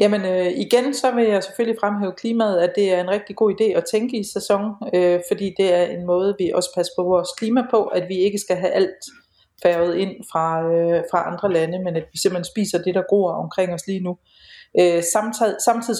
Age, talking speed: 40-59, 230 wpm